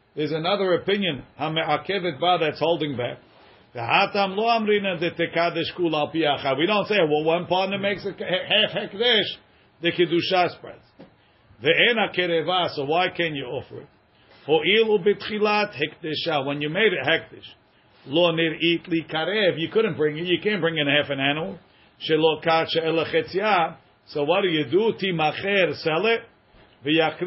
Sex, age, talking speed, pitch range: male, 50-69, 105 wpm, 145-190 Hz